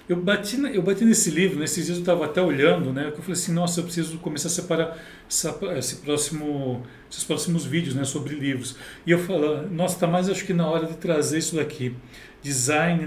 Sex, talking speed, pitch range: male, 215 wpm, 135-170 Hz